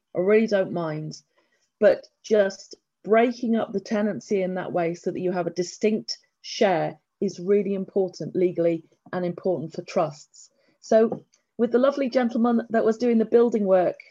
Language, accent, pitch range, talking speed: English, British, 175-220 Hz, 165 wpm